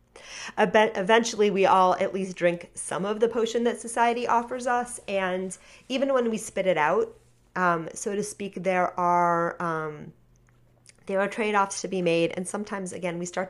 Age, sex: 40-59, female